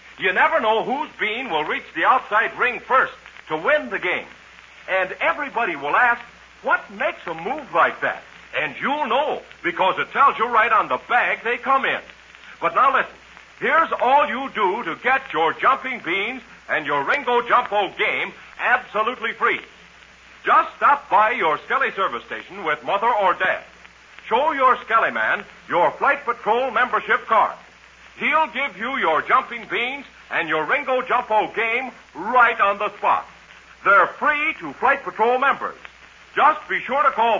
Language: English